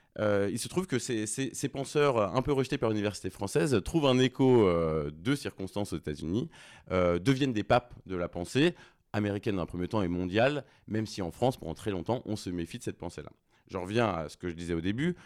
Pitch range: 90-125 Hz